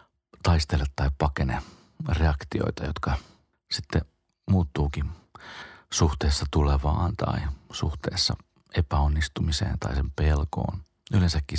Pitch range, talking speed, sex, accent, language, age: 70-90 Hz, 85 wpm, male, native, Finnish, 40-59